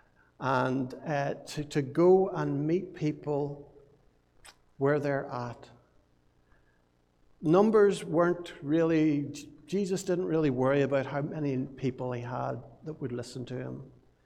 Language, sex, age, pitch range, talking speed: English, male, 60-79, 135-160 Hz, 120 wpm